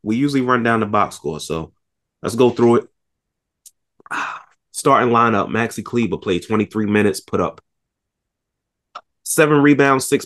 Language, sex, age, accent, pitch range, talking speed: English, male, 20-39, American, 90-115 Hz, 140 wpm